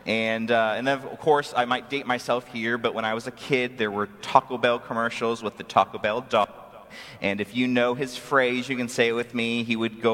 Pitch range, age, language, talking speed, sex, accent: 115-170 Hz, 30-49, English, 250 wpm, male, American